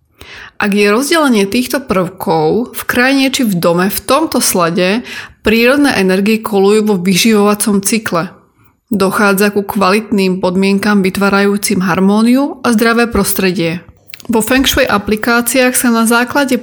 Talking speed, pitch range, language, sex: 125 wpm, 200-250 Hz, Slovak, female